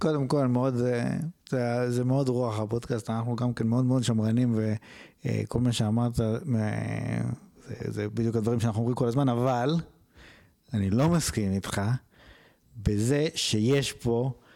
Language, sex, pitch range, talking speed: Hebrew, male, 110-145 Hz, 140 wpm